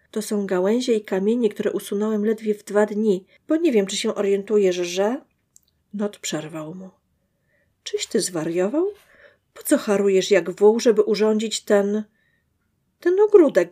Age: 40-59